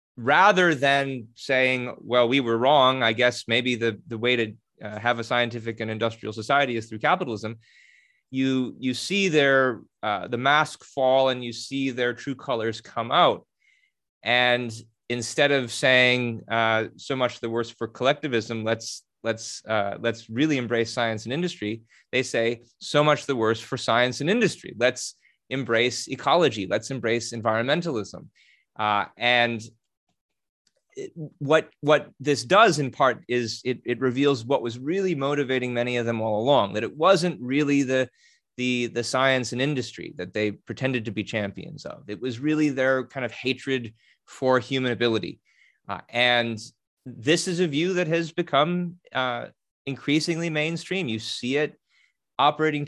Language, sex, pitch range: English, male, 115-140 Hz